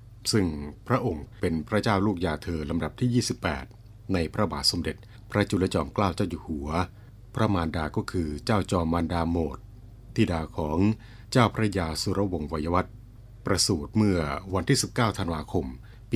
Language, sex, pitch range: Thai, male, 85-110 Hz